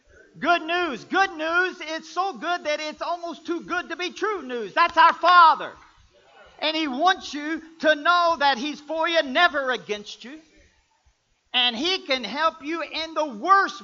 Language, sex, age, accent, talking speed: English, male, 50-69, American, 175 wpm